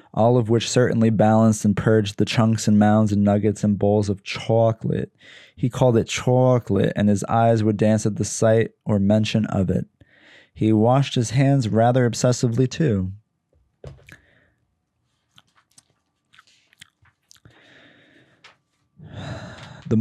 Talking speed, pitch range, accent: 125 wpm, 105-125 Hz, American